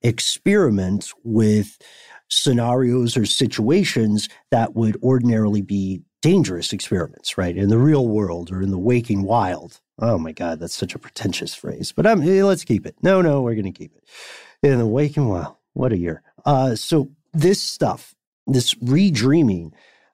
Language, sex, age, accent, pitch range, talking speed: English, male, 50-69, American, 105-140 Hz, 165 wpm